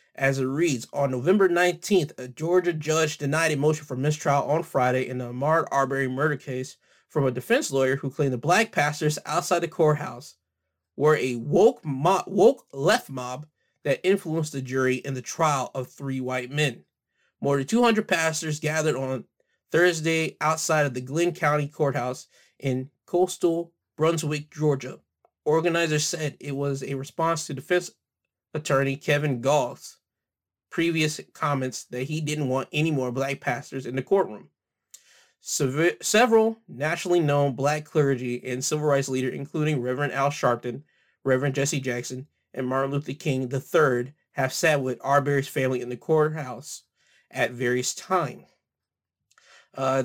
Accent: American